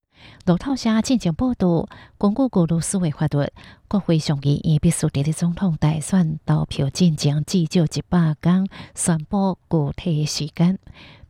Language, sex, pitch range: Chinese, female, 150-180 Hz